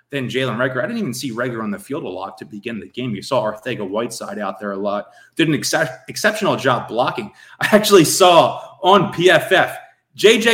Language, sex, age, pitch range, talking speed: English, male, 30-49, 120-195 Hz, 210 wpm